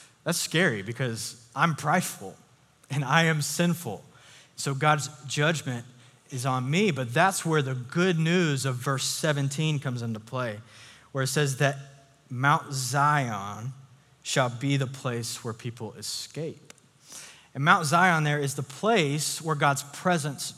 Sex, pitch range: male, 135-165 Hz